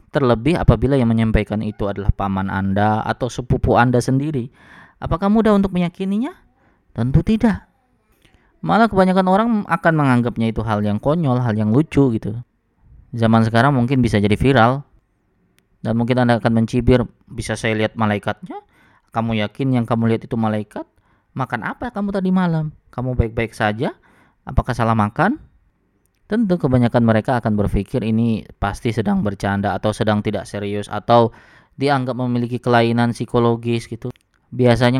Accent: native